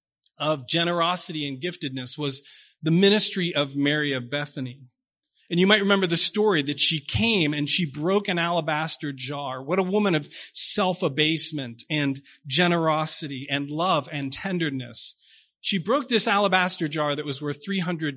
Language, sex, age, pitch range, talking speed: English, male, 40-59, 140-190 Hz, 150 wpm